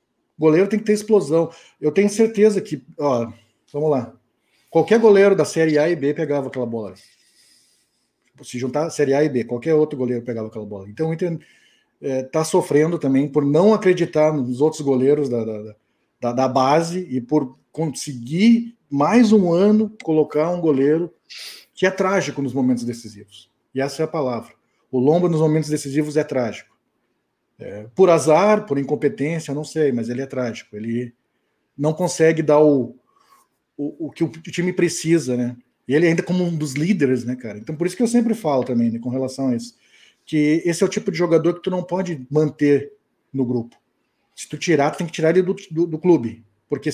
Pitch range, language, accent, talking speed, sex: 130-170 Hz, Portuguese, Brazilian, 195 wpm, male